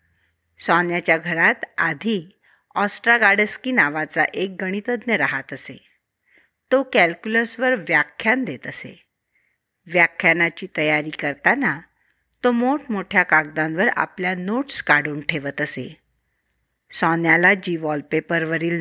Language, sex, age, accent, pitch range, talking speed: Marathi, female, 60-79, native, 165-220 Hz, 90 wpm